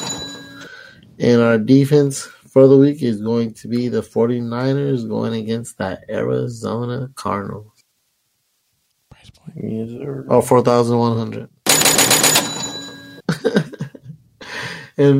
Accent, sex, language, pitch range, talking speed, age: American, male, English, 110-130 Hz, 80 wpm, 30-49